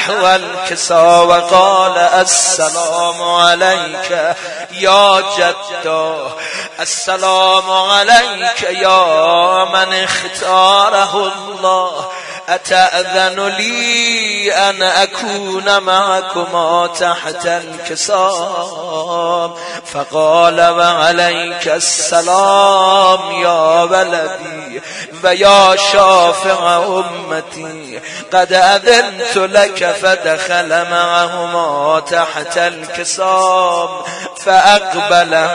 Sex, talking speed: male, 55 wpm